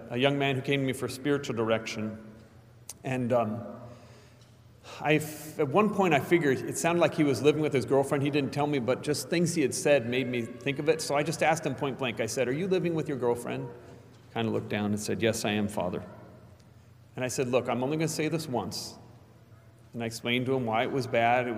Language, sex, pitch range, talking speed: English, male, 115-140 Hz, 250 wpm